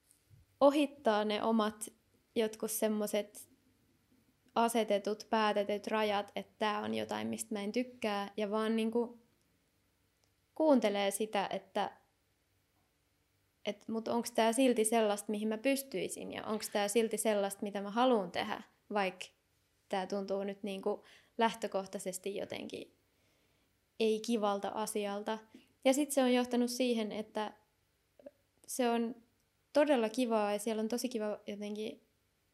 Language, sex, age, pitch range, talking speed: Finnish, female, 20-39, 205-235 Hz, 120 wpm